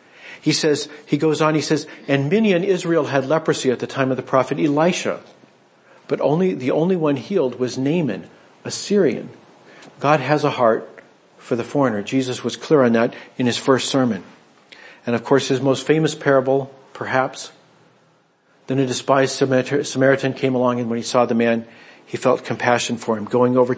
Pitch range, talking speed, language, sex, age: 115-140 Hz, 185 wpm, English, male, 50-69